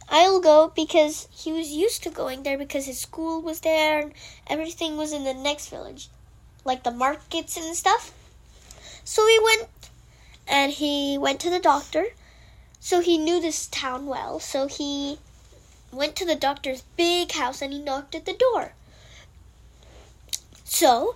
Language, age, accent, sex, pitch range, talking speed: Hindi, 10-29, American, female, 280-350 Hz, 160 wpm